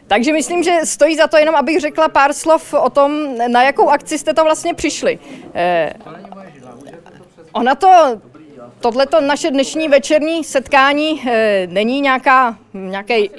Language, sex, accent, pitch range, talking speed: Czech, female, native, 220-280 Hz, 145 wpm